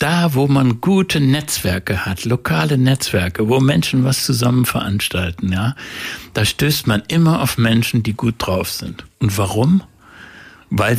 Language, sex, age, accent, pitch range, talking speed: German, male, 60-79, German, 105-135 Hz, 145 wpm